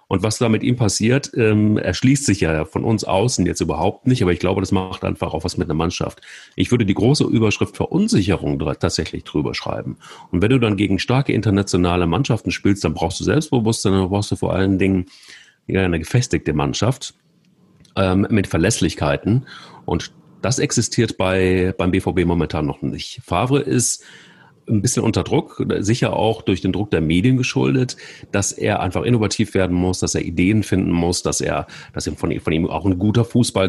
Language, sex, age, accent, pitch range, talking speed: German, male, 40-59, German, 90-115 Hz, 190 wpm